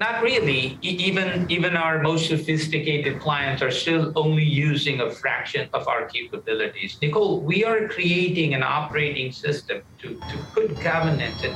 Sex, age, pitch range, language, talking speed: male, 60-79, 145-180 Hz, English, 150 wpm